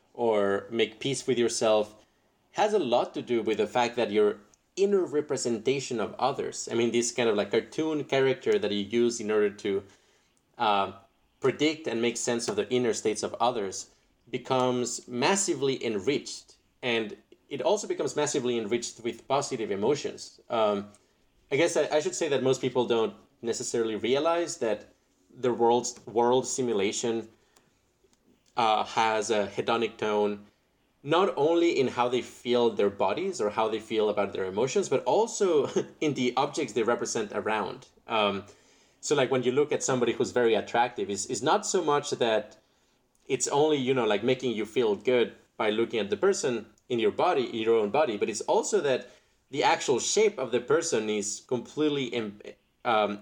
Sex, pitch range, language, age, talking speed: male, 110-150 Hz, English, 30-49, 175 wpm